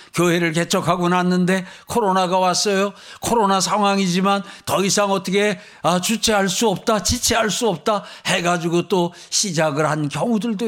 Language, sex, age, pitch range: Korean, male, 50-69, 165-220 Hz